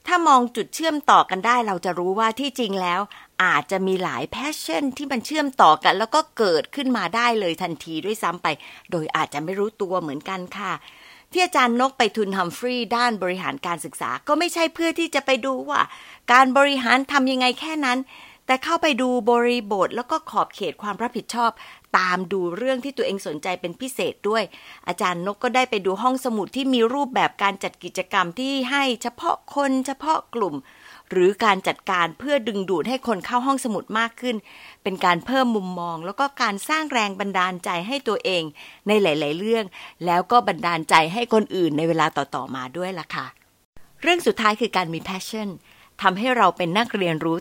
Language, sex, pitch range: Thai, female, 180-260 Hz